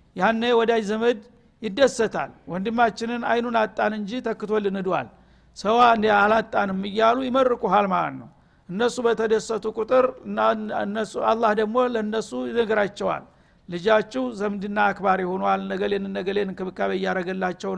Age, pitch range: 60-79, 195-230 Hz